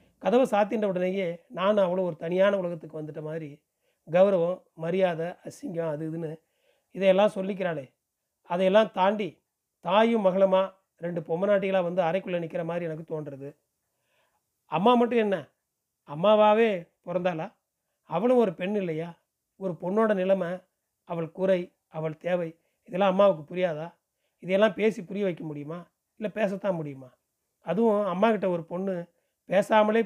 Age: 30-49